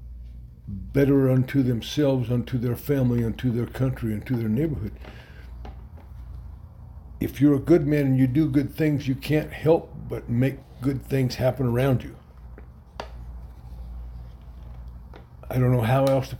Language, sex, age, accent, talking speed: English, male, 60-79, American, 140 wpm